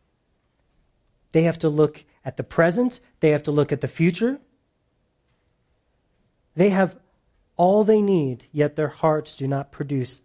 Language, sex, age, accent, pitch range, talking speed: English, male, 40-59, American, 120-160 Hz, 145 wpm